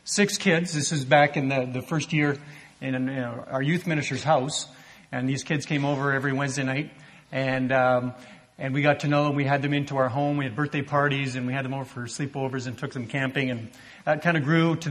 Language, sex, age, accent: English, male, 40-59, American